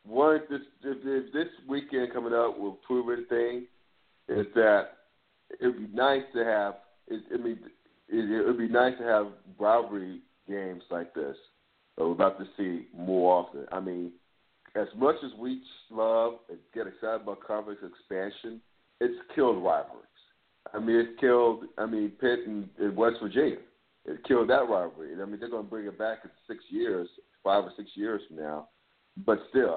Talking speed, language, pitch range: 170 wpm, English, 100-130 Hz